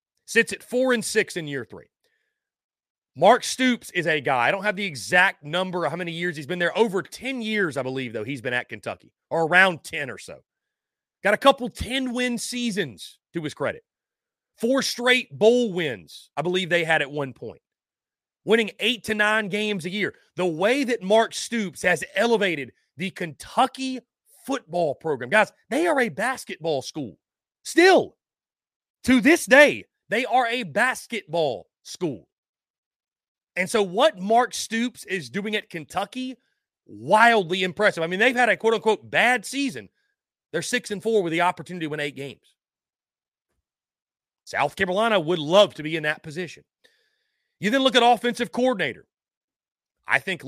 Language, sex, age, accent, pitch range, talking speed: English, male, 30-49, American, 175-245 Hz, 170 wpm